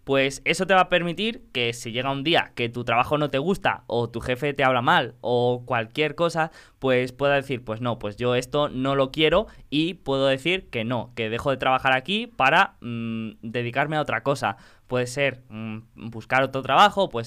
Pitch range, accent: 120-155 Hz, Spanish